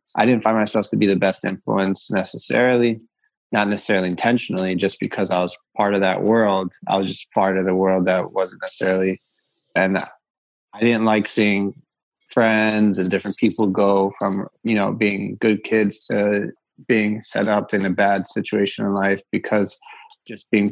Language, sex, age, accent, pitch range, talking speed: English, male, 20-39, American, 95-110 Hz, 175 wpm